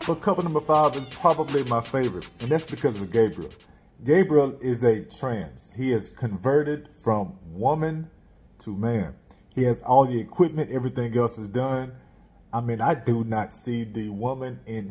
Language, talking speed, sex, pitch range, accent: English, 170 wpm, male, 110-140 Hz, American